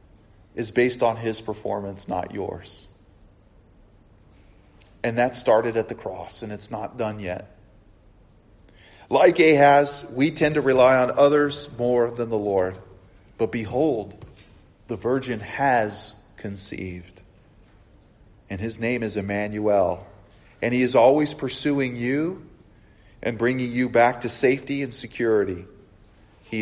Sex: male